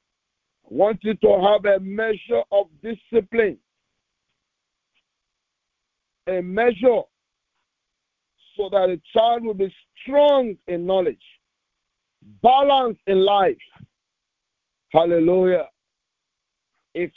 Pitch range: 180-230 Hz